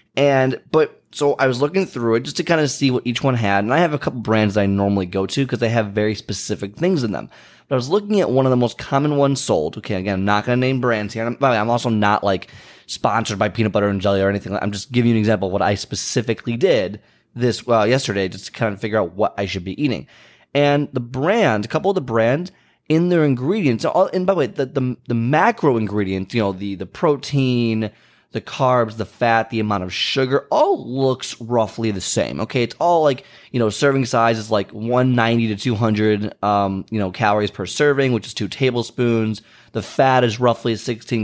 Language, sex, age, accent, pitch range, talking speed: English, male, 20-39, American, 105-135 Hz, 240 wpm